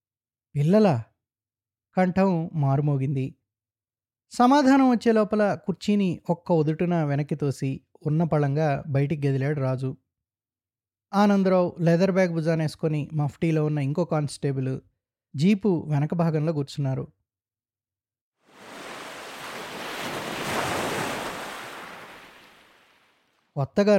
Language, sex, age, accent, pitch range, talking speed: Telugu, male, 20-39, native, 125-170 Hz, 70 wpm